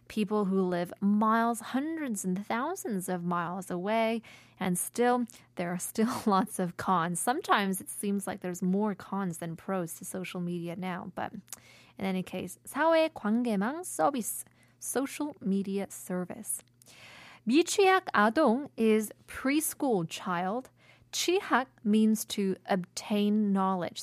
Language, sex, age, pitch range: Korean, female, 20-39, 185-235 Hz